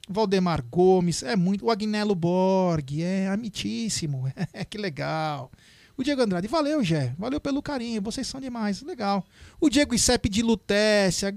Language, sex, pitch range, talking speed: Portuguese, male, 165-215 Hz, 155 wpm